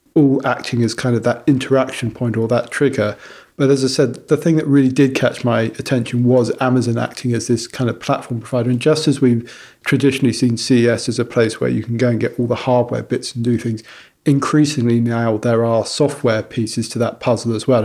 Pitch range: 115-130 Hz